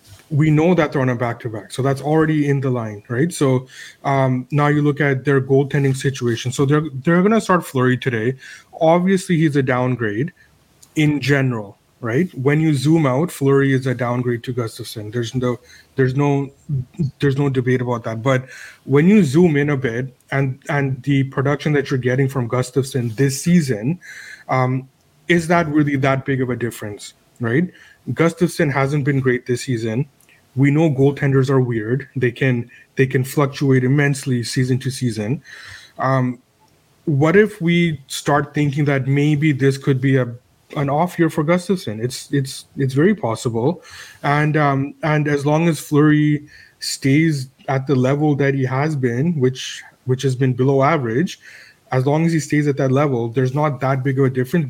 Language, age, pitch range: English, 30-49, 130-150 Hz